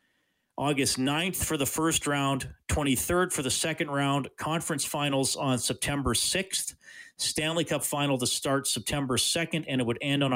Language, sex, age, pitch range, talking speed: English, male, 40-59, 125-175 Hz, 160 wpm